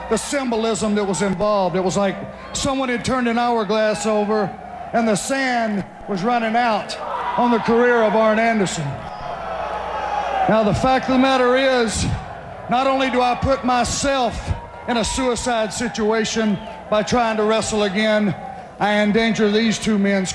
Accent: American